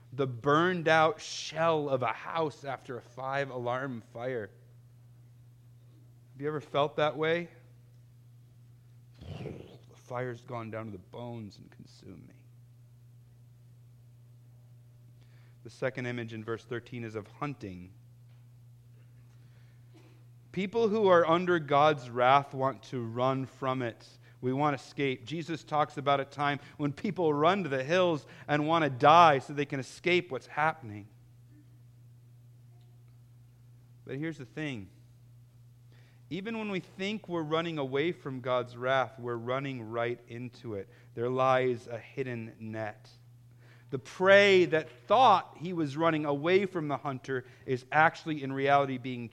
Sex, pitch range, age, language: male, 120-145 Hz, 30-49, English